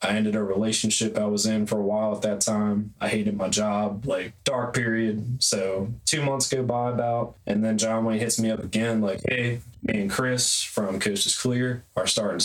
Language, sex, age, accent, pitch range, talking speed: English, male, 20-39, American, 95-110 Hz, 215 wpm